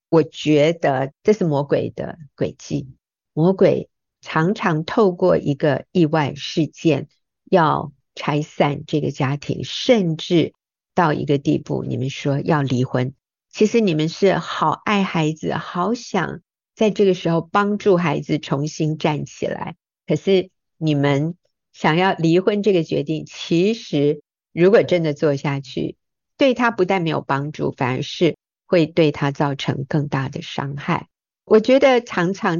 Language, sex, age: Chinese, female, 50-69